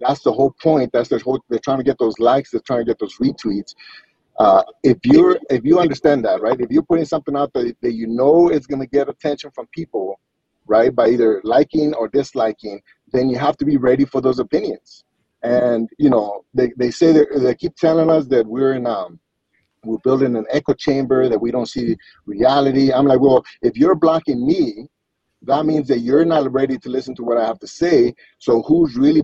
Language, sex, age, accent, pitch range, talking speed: English, male, 30-49, American, 125-150 Hz, 220 wpm